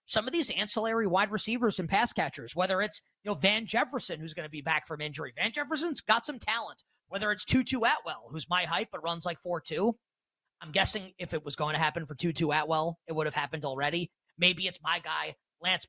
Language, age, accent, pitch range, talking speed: English, 30-49, American, 160-215 Hz, 225 wpm